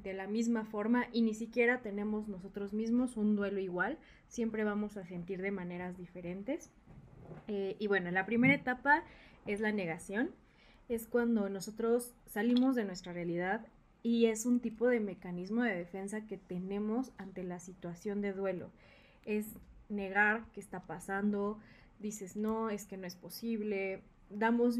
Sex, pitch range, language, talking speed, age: female, 195-235 Hz, Spanish, 155 wpm, 20-39